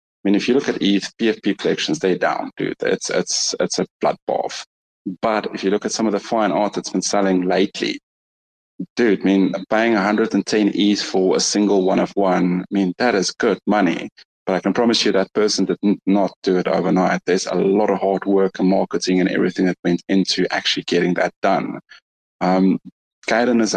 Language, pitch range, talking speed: English, 95-105 Hz, 205 wpm